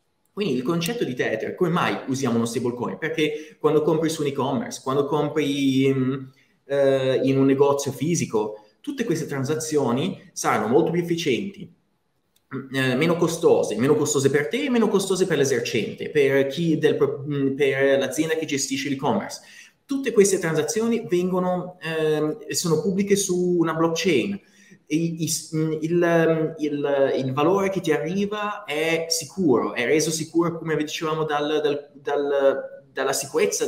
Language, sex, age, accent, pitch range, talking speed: Italian, male, 20-39, native, 140-195 Hz, 145 wpm